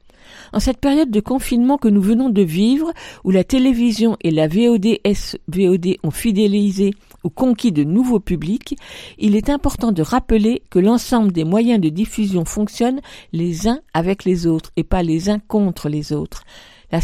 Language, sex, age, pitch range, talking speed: French, female, 50-69, 185-235 Hz, 170 wpm